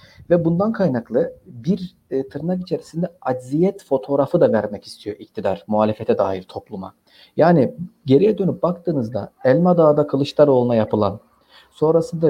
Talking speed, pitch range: 115 wpm, 130-175 Hz